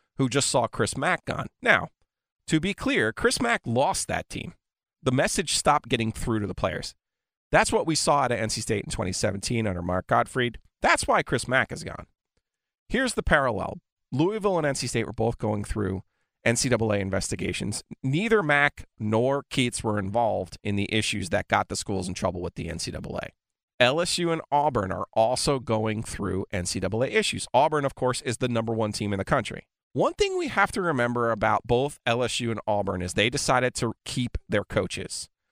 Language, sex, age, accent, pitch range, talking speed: English, male, 30-49, American, 110-145 Hz, 185 wpm